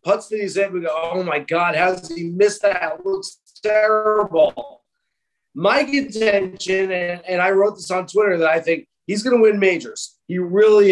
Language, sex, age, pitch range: English, male, 30-49, 180-220 Hz